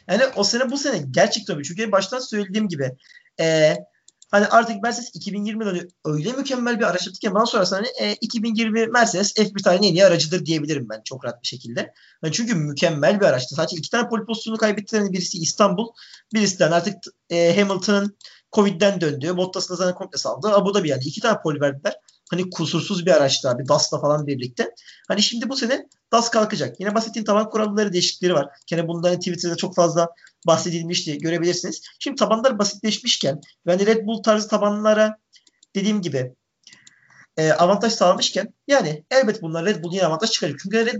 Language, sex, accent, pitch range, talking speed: Turkish, male, native, 170-220 Hz, 175 wpm